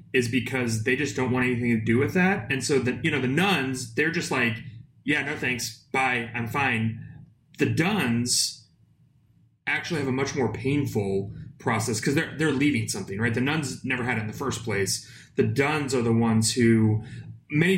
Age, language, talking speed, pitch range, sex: 30-49, English, 195 wpm, 115-140 Hz, male